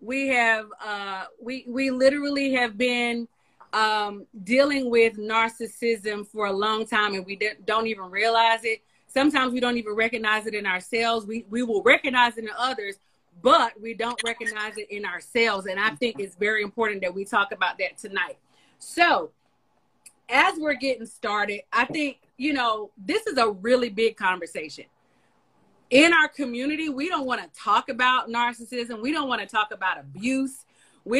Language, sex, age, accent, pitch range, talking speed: English, female, 30-49, American, 210-255 Hz, 175 wpm